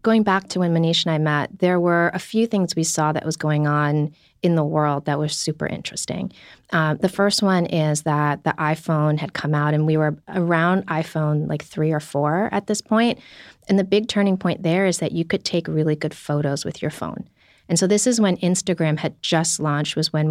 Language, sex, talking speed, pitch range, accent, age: English, female, 230 wpm, 150-180 Hz, American, 30-49